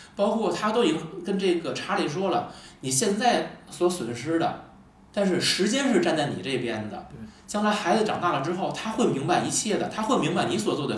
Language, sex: Chinese, male